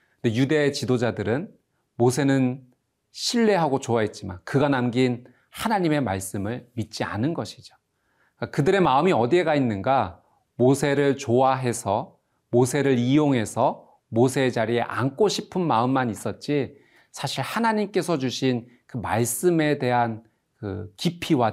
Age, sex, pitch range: 40-59, male, 115-160 Hz